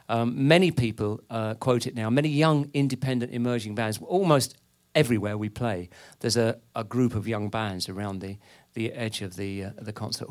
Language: English